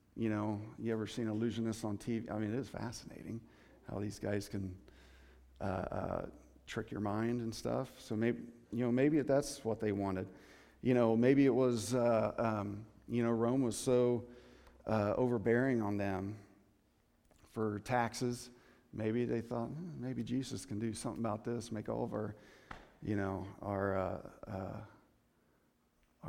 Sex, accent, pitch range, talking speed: male, American, 100-125 Hz, 160 wpm